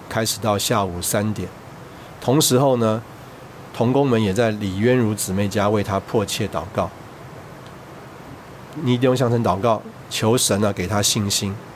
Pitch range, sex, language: 100-125 Hz, male, Chinese